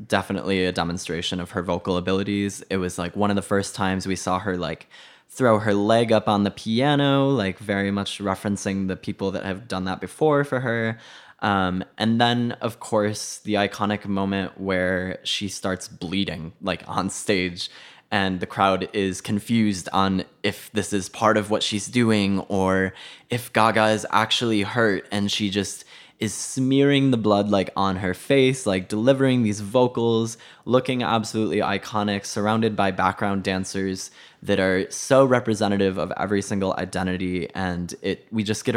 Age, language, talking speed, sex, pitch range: 10-29, English, 170 wpm, male, 95-110 Hz